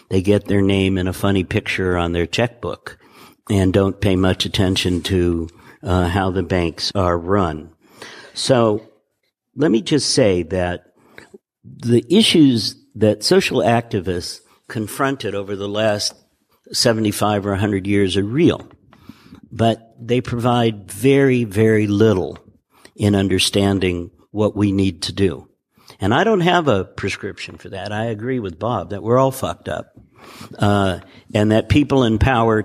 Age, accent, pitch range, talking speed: 60-79, American, 95-110 Hz, 145 wpm